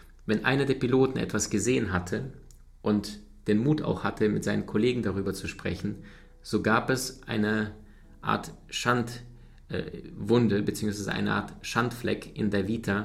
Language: German